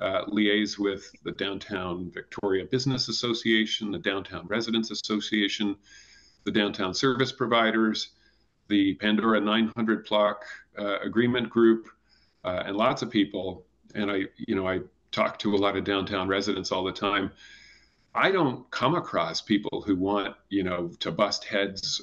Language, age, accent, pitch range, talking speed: English, 40-59, American, 100-110 Hz, 150 wpm